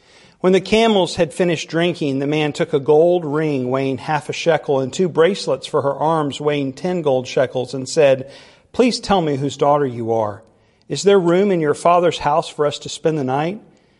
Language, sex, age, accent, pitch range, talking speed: English, male, 50-69, American, 135-170 Hz, 205 wpm